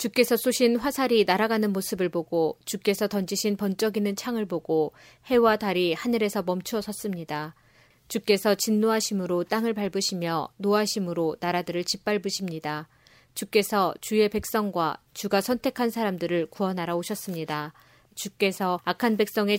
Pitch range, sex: 175-220 Hz, female